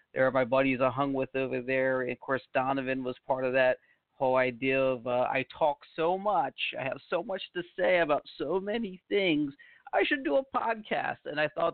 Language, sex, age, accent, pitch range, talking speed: English, male, 40-59, American, 130-150 Hz, 220 wpm